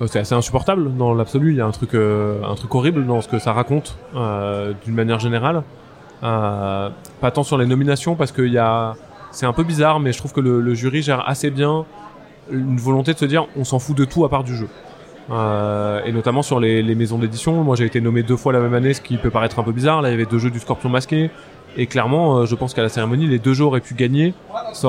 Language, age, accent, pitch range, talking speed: French, 20-39, French, 115-145 Hz, 260 wpm